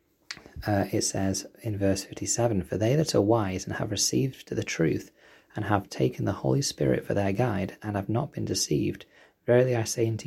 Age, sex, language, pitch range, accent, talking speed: 20-39, male, English, 95-115 Hz, British, 200 wpm